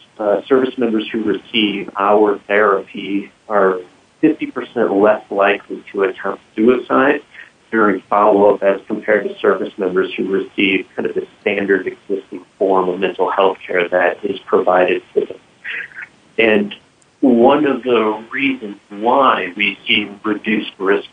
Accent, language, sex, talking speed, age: American, English, male, 135 wpm, 50-69